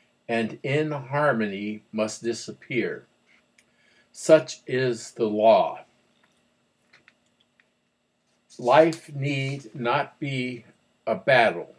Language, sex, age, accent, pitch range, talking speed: English, male, 50-69, American, 110-140 Hz, 75 wpm